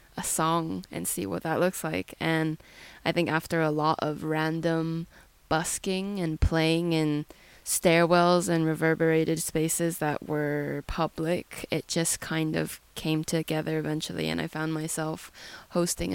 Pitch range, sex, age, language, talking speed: 160-200 Hz, female, 20-39, English, 145 wpm